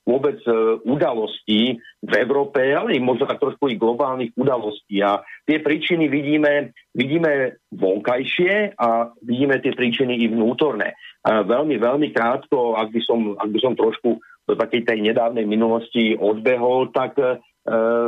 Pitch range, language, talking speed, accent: 115-145 Hz, English, 135 wpm, Czech